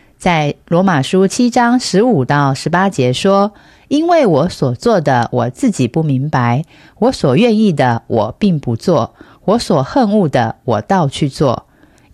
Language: Chinese